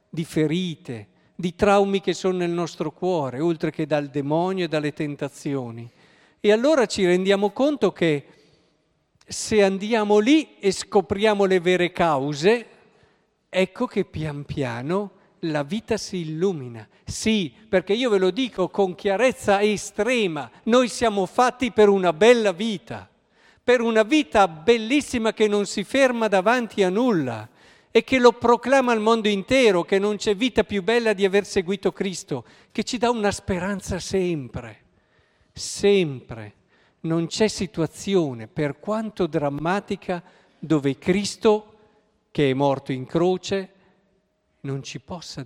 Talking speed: 140 wpm